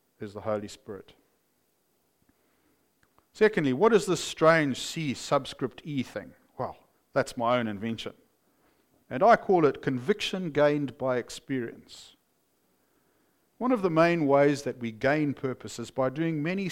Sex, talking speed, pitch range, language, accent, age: male, 140 wpm, 115-165 Hz, English, Australian, 50-69